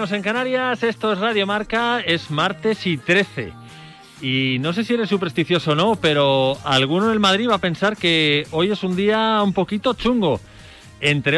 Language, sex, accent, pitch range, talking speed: Spanish, male, Spanish, 130-195 Hz, 185 wpm